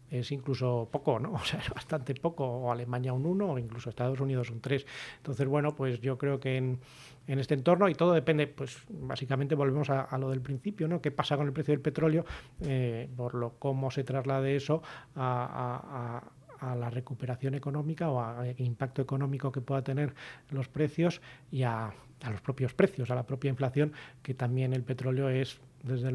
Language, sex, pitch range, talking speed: Spanish, male, 130-145 Hz, 200 wpm